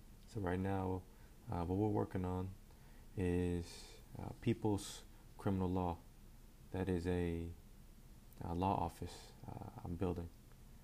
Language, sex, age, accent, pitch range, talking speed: English, male, 30-49, American, 90-100 Hz, 115 wpm